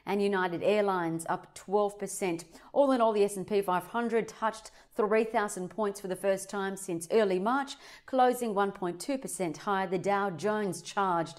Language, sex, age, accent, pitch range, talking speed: English, female, 40-59, Australian, 180-220 Hz, 150 wpm